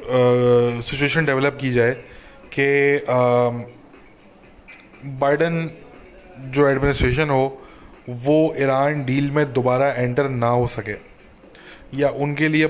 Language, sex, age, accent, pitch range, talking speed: English, male, 20-39, Indian, 120-140 Hz, 100 wpm